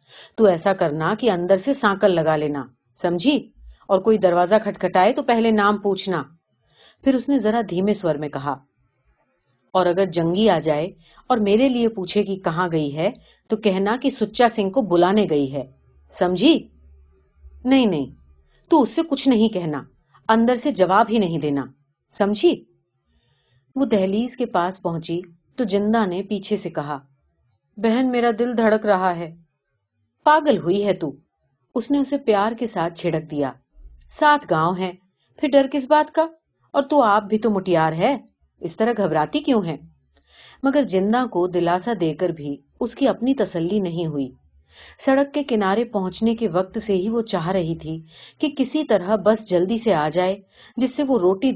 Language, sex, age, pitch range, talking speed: Urdu, female, 40-59, 160-230 Hz, 170 wpm